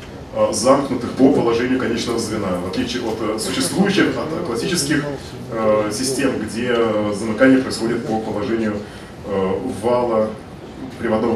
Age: 20-39